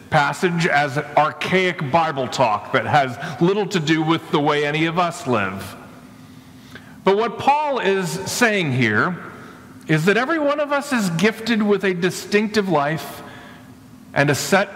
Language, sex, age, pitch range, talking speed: English, male, 40-59, 140-185 Hz, 160 wpm